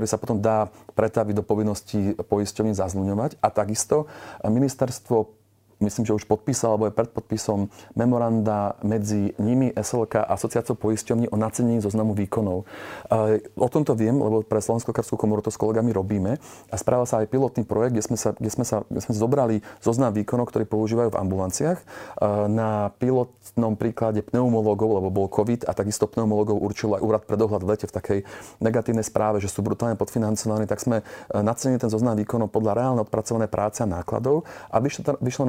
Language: Slovak